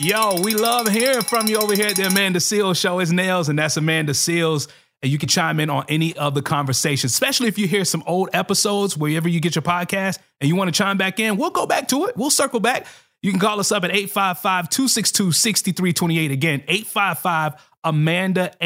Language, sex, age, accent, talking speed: English, male, 30-49, American, 210 wpm